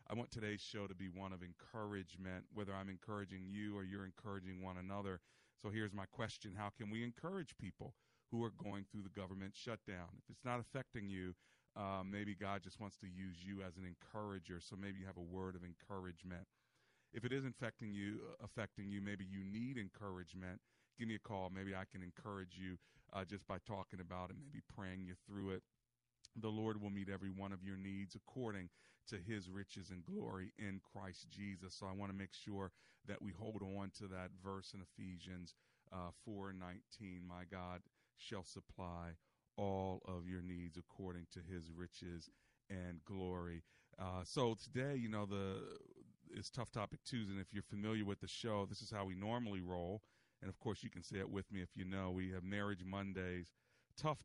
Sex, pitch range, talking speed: male, 95-105 Hz, 205 wpm